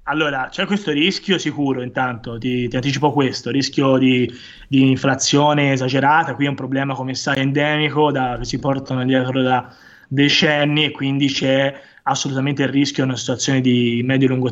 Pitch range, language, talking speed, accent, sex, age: 130-150 Hz, Italian, 170 wpm, native, male, 20-39